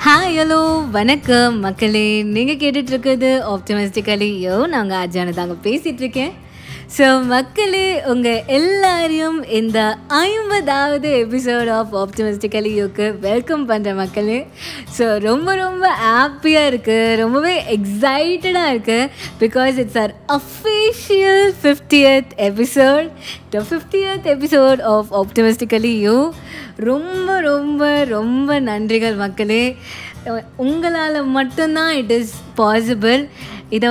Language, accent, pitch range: Tamil, native, 215-290 Hz